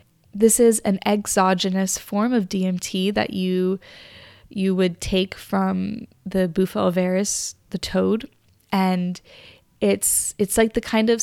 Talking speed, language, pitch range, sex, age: 135 wpm, English, 185-210 Hz, female, 20-39